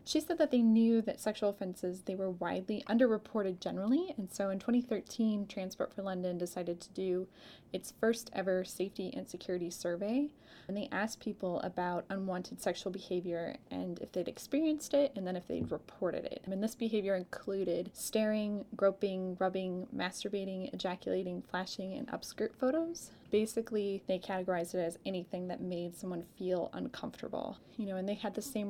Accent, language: American, English